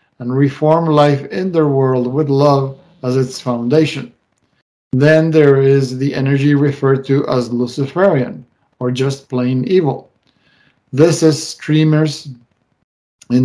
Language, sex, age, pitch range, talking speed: English, male, 50-69, 125-150 Hz, 125 wpm